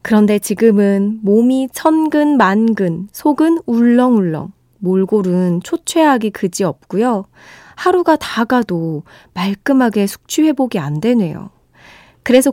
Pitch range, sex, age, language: 195-270 Hz, female, 20-39, Korean